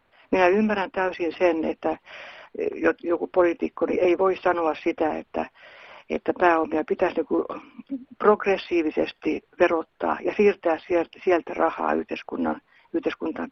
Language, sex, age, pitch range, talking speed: Finnish, female, 60-79, 160-190 Hz, 100 wpm